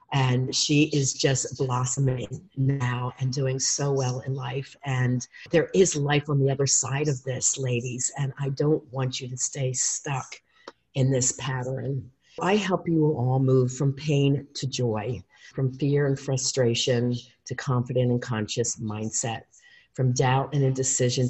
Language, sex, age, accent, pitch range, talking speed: English, female, 50-69, American, 120-135 Hz, 160 wpm